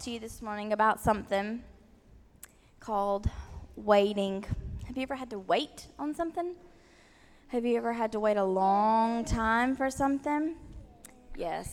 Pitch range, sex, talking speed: 205-265 Hz, female, 140 wpm